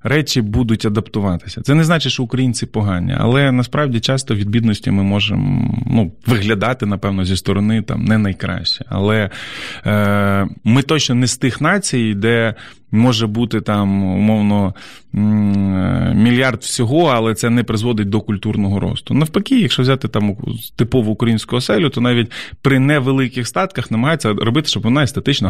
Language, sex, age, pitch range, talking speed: Ukrainian, male, 20-39, 105-130 Hz, 150 wpm